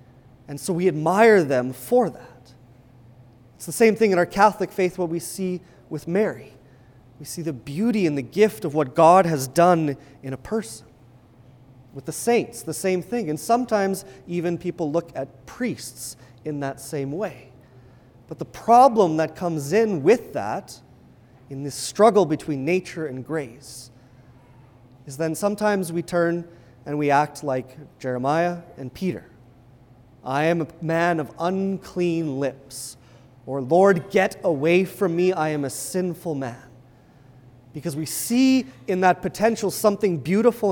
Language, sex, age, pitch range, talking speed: English, male, 30-49, 125-175 Hz, 155 wpm